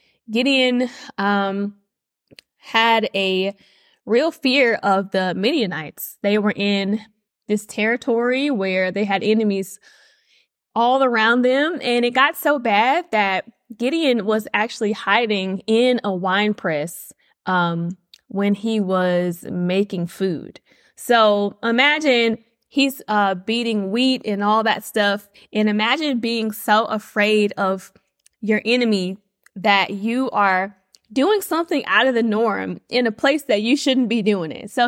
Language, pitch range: English, 195-245 Hz